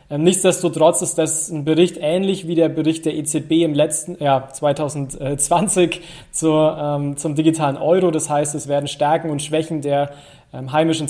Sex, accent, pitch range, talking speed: male, German, 145-170 Hz, 150 wpm